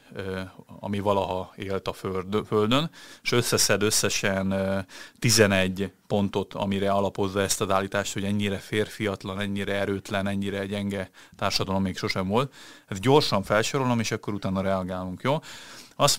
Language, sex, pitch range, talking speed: Hungarian, male, 95-115 Hz, 135 wpm